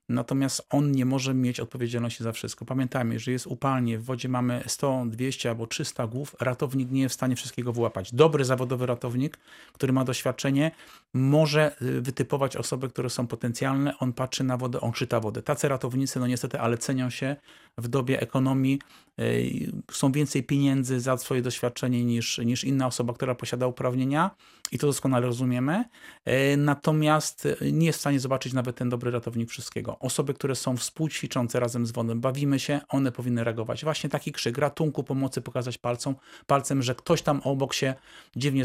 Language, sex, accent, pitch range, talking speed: Polish, male, native, 125-140 Hz, 170 wpm